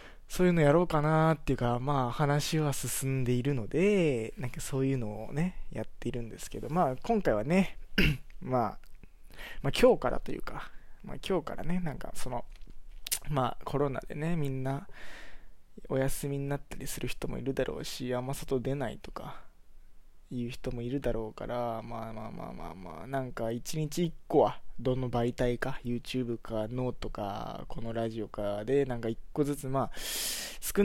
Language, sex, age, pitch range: Japanese, male, 20-39, 115-150 Hz